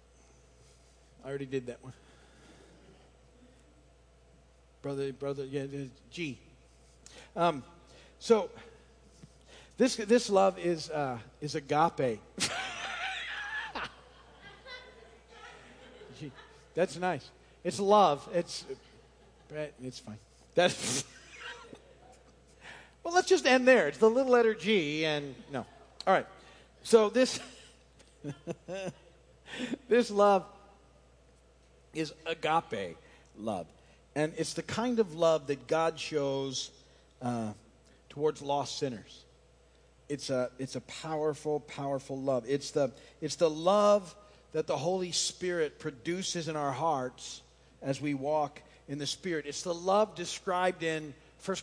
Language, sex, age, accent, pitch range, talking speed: English, male, 50-69, American, 130-180 Hz, 110 wpm